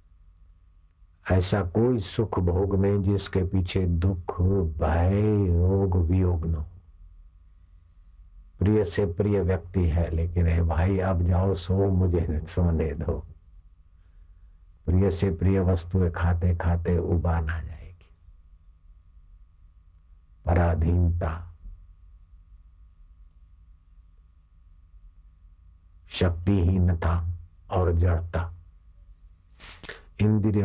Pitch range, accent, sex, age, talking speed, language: 80-95 Hz, native, male, 60-79, 80 wpm, Hindi